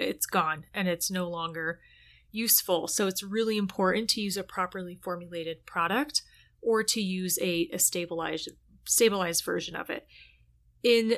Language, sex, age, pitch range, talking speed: English, female, 30-49, 175-205 Hz, 150 wpm